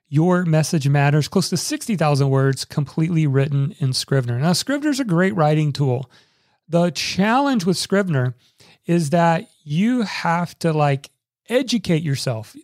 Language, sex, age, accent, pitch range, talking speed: English, male, 40-59, American, 140-185 Hz, 140 wpm